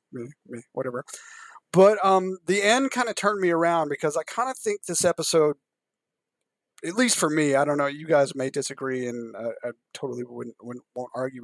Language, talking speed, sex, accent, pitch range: English, 200 wpm, male, American, 130-175 Hz